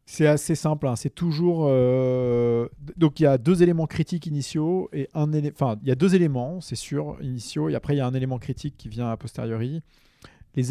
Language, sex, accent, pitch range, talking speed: French, male, French, 115-145 Hz, 220 wpm